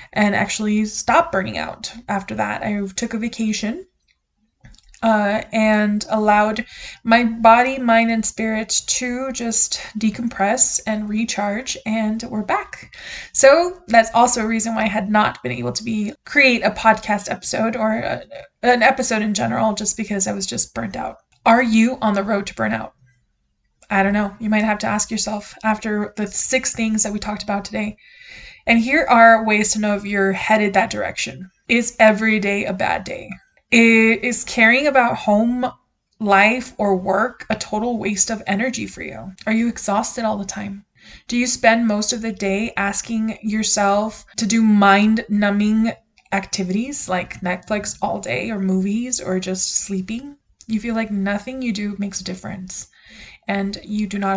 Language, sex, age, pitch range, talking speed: English, female, 20-39, 205-230 Hz, 170 wpm